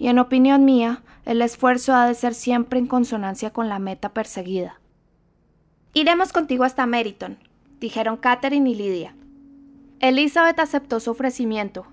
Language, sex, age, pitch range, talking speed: Spanish, female, 20-39, 215-270 Hz, 140 wpm